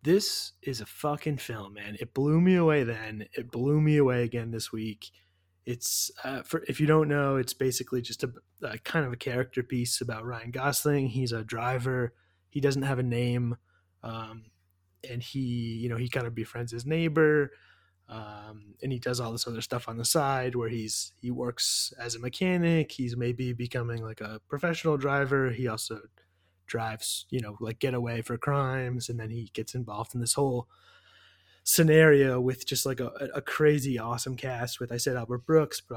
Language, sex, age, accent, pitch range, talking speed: English, male, 20-39, American, 110-135 Hz, 190 wpm